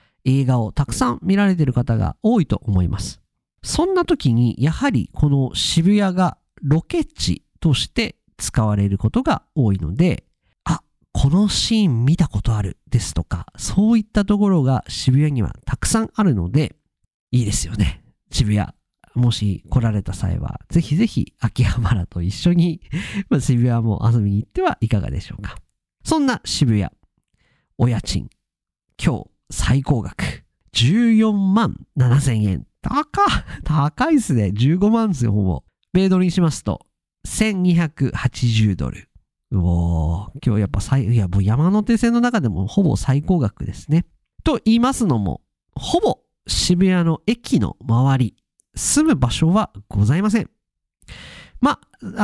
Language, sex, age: Japanese, male, 50-69